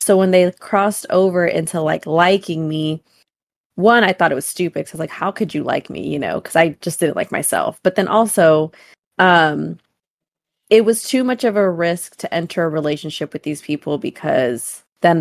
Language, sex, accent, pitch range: English, female, American, 160-190 Hz